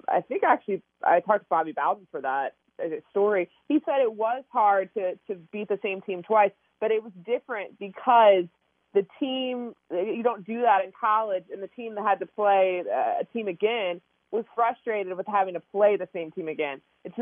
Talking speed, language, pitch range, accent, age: 200 wpm, English, 175-220 Hz, American, 20-39